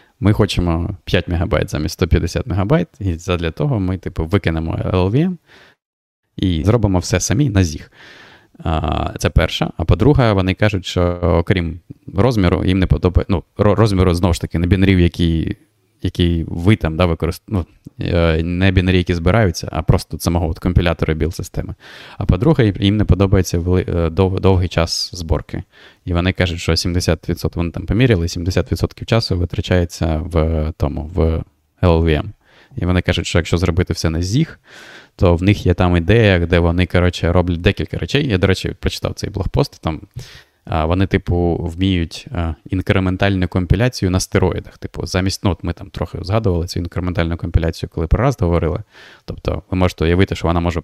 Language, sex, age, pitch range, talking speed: Ukrainian, male, 20-39, 85-100 Hz, 165 wpm